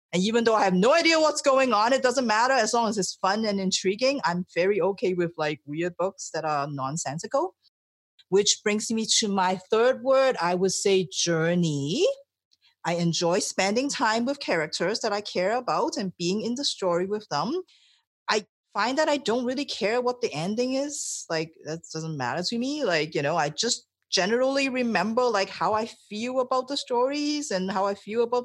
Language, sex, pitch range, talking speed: English, female, 170-255 Hz, 200 wpm